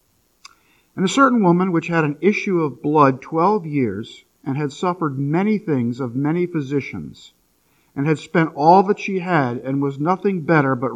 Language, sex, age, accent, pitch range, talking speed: English, male, 50-69, American, 135-195 Hz, 175 wpm